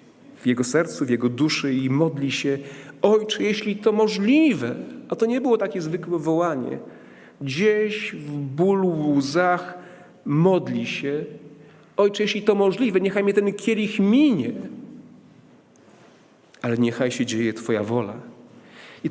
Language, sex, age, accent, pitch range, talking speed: Polish, male, 40-59, native, 135-210 Hz, 135 wpm